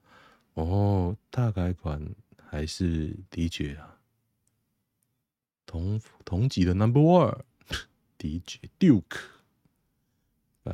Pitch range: 90-120 Hz